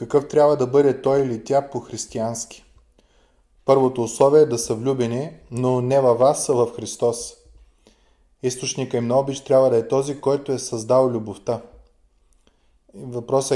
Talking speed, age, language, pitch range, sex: 150 wpm, 20-39, Bulgarian, 115-145 Hz, male